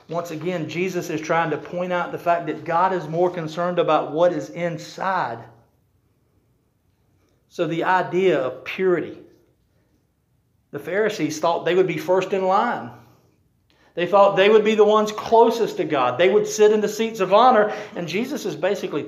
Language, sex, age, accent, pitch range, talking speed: English, male, 50-69, American, 155-210 Hz, 175 wpm